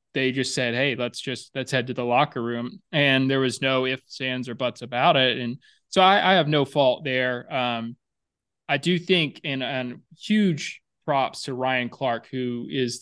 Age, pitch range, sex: 20-39, 125-145 Hz, male